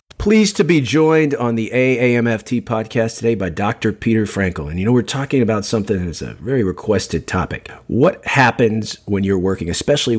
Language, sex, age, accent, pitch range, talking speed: English, male, 50-69, American, 90-115 Hz, 185 wpm